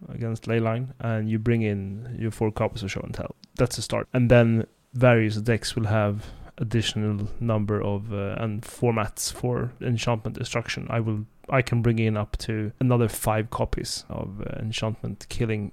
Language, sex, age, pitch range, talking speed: English, male, 30-49, 110-125 Hz, 175 wpm